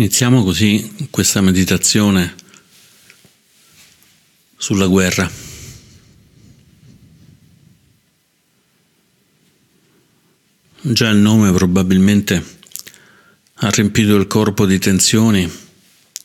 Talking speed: 60 wpm